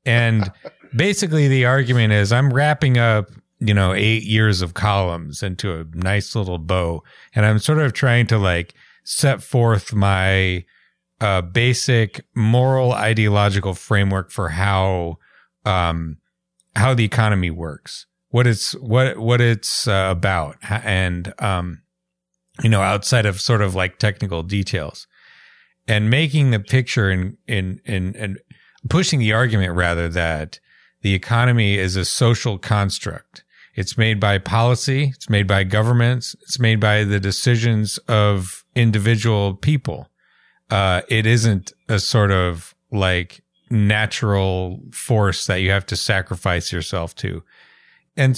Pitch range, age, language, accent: 95-120 Hz, 40-59, English, American